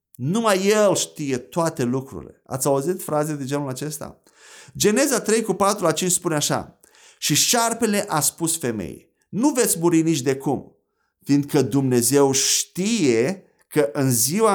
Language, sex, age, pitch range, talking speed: Romanian, male, 30-49, 135-190 Hz, 150 wpm